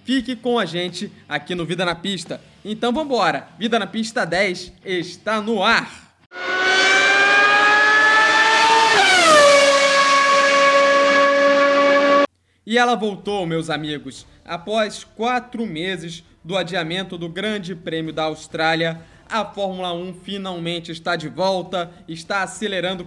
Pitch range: 175-225 Hz